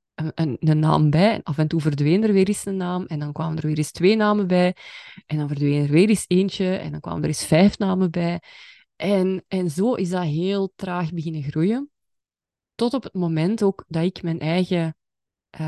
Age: 20-39